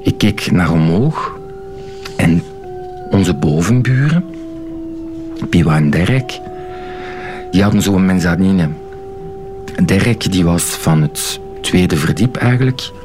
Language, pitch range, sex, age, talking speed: Dutch, 95-150 Hz, male, 60-79, 100 wpm